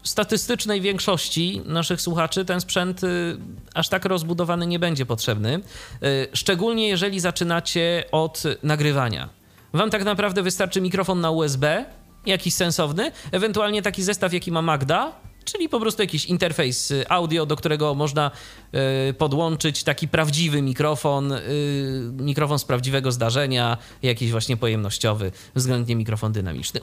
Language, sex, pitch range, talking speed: Polish, male, 120-170 Hz, 125 wpm